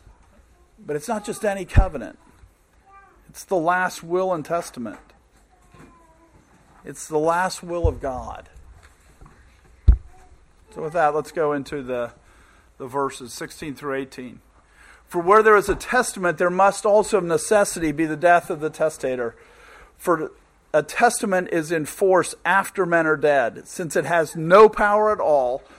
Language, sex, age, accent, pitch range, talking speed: English, male, 50-69, American, 150-195 Hz, 145 wpm